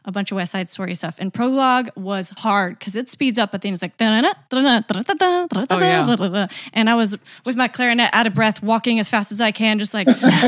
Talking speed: 205 wpm